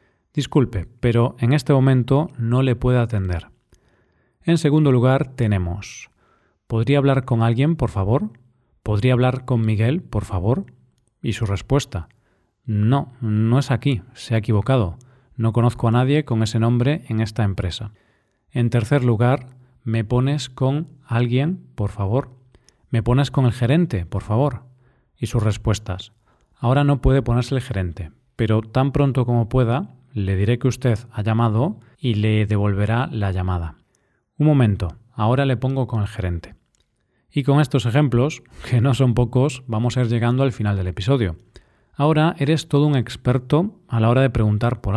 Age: 40-59